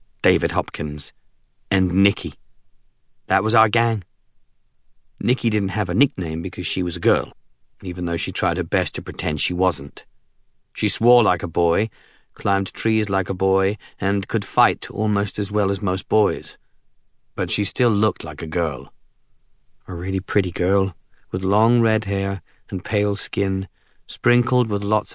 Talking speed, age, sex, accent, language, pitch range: 160 wpm, 40-59, male, British, English, 90-110 Hz